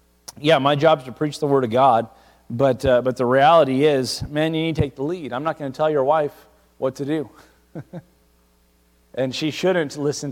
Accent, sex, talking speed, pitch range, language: American, male, 215 wpm, 125-165 Hz, English